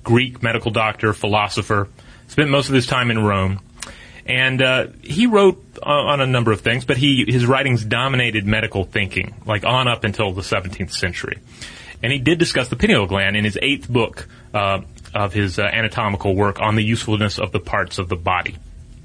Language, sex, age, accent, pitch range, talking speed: English, male, 30-49, American, 100-120 Hz, 190 wpm